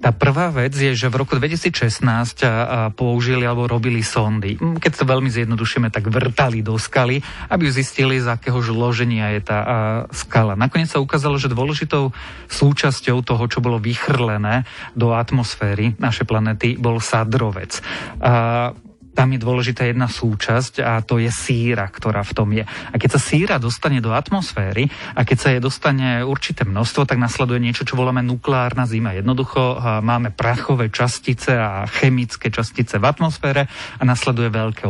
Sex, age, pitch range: male, 30-49, 115-135 Hz